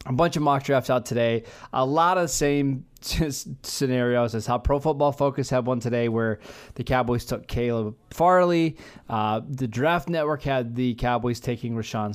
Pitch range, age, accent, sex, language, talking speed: 120-160 Hz, 20-39, American, male, English, 185 wpm